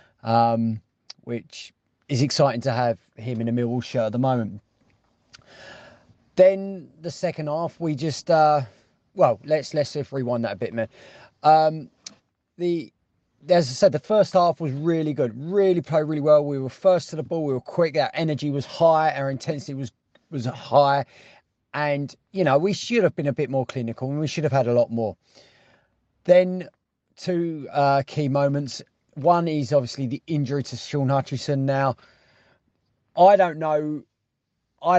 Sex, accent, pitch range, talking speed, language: male, British, 120-155 Hz, 170 wpm, English